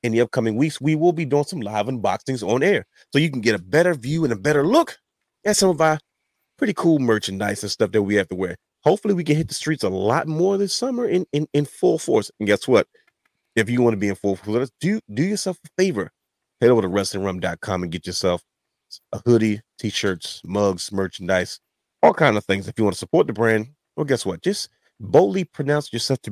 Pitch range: 105-155 Hz